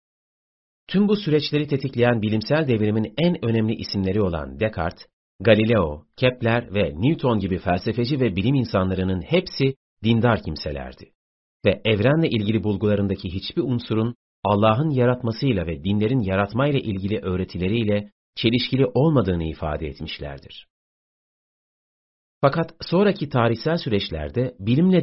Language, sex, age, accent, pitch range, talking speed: Turkish, male, 40-59, native, 95-135 Hz, 110 wpm